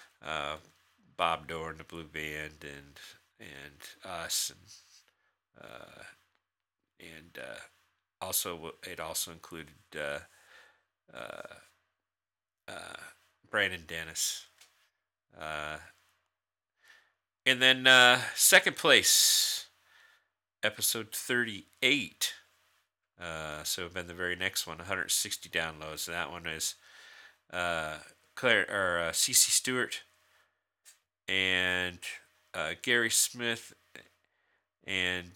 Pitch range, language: 85-115 Hz, English